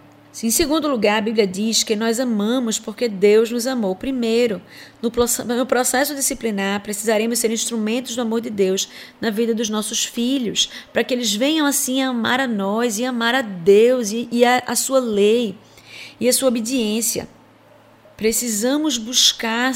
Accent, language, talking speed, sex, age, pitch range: Brazilian, Portuguese, 160 wpm, female, 20-39, 215-255 Hz